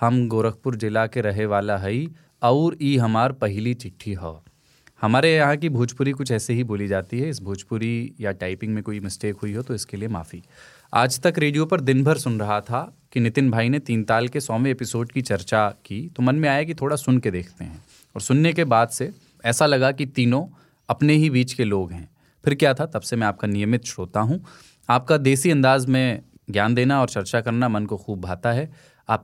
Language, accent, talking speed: Hindi, native, 220 wpm